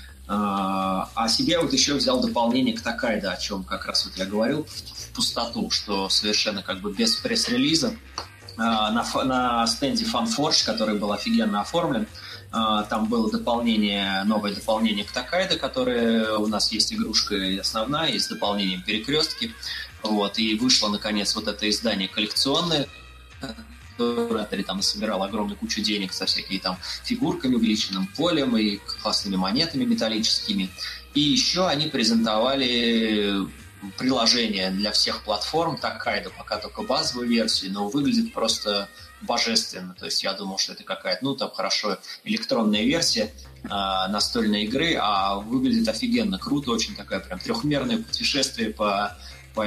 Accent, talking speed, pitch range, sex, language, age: native, 145 wpm, 100-130 Hz, male, Russian, 20-39